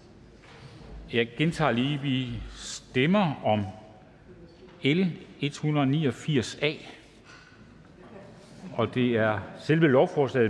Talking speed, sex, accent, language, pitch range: 75 wpm, male, native, Danish, 120-170 Hz